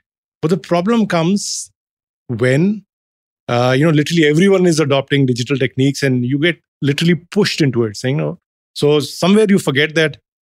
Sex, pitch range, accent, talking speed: male, 125-165 Hz, Indian, 160 wpm